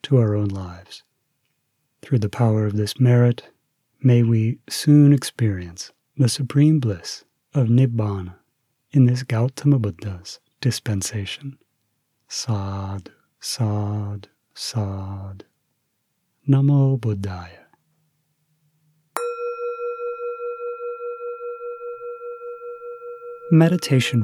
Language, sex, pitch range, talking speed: English, male, 110-160 Hz, 75 wpm